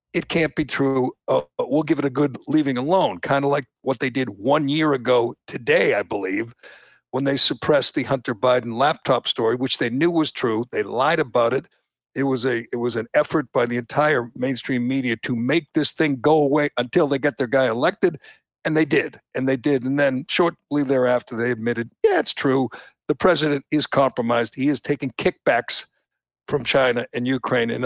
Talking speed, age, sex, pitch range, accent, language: 200 wpm, 60-79, male, 125-155 Hz, American, English